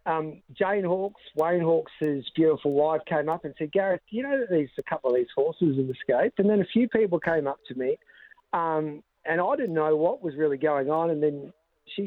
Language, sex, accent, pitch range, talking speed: English, male, Australian, 145-175 Hz, 225 wpm